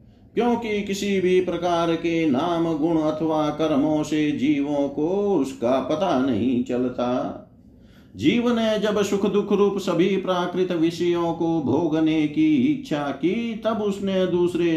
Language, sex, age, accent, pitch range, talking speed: Hindi, male, 50-69, native, 155-205 Hz, 135 wpm